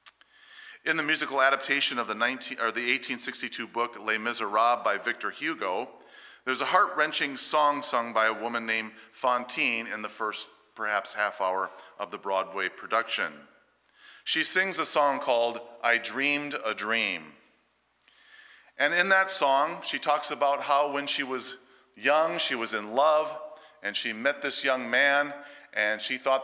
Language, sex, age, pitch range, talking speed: English, male, 40-59, 120-145 Hz, 155 wpm